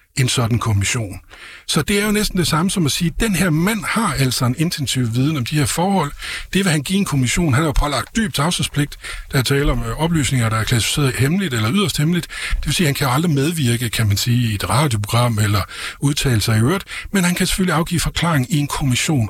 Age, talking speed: 60-79, 245 wpm